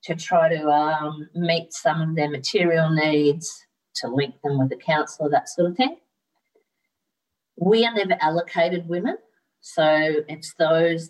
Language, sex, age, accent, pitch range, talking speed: English, female, 50-69, Australian, 145-175 Hz, 150 wpm